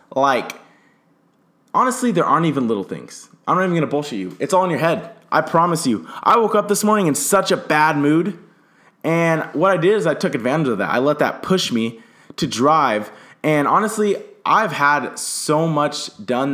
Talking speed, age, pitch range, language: 200 wpm, 20-39, 130-175 Hz, English